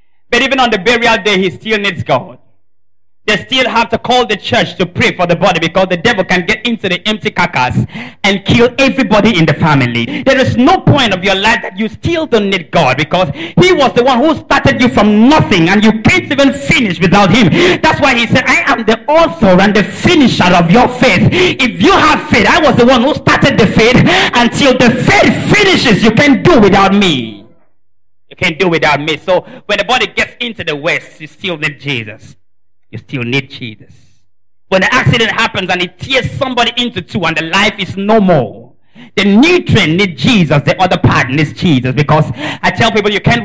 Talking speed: 210 wpm